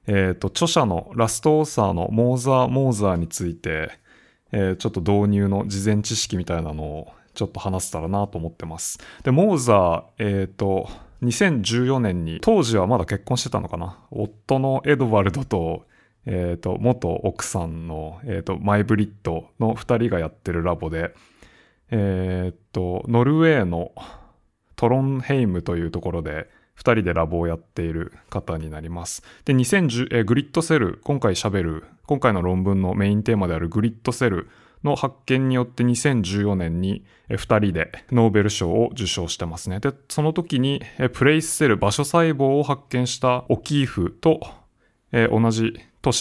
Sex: male